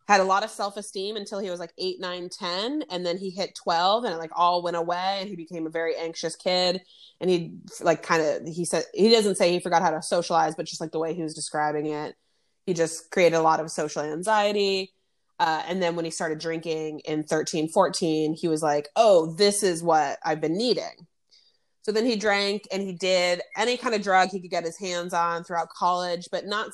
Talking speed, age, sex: 235 wpm, 20-39, female